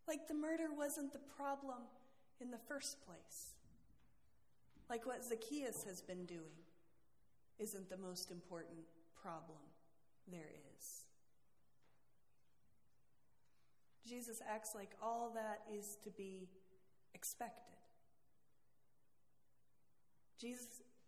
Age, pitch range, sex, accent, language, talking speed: 40-59, 165-225 Hz, female, American, English, 95 wpm